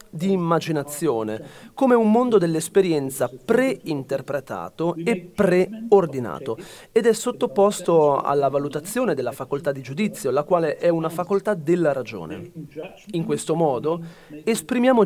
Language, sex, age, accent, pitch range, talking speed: Italian, male, 30-49, native, 150-205 Hz, 115 wpm